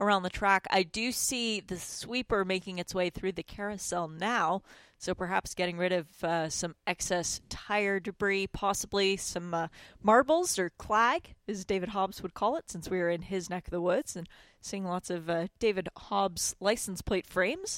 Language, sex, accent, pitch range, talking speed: English, female, American, 180-225 Hz, 190 wpm